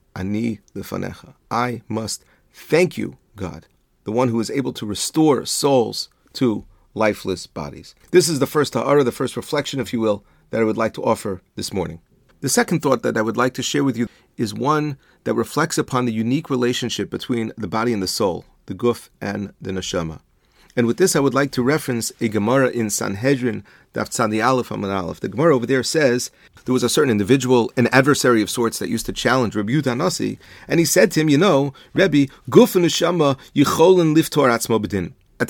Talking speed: 185 wpm